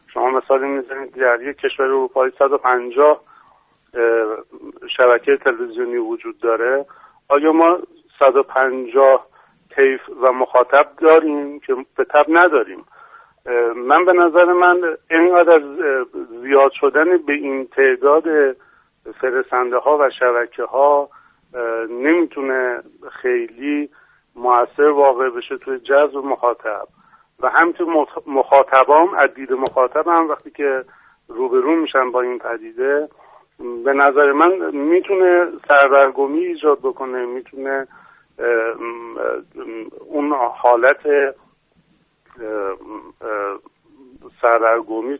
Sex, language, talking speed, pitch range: male, Persian, 90 wpm, 130-175 Hz